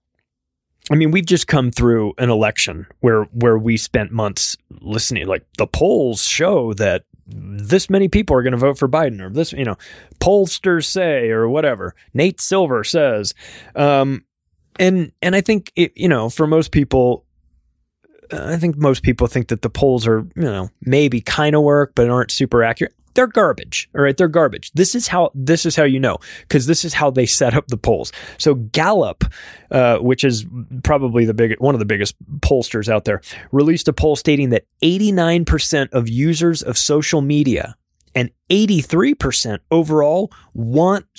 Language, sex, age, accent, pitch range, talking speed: English, male, 20-39, American, 115-165 Hz, 180 wpm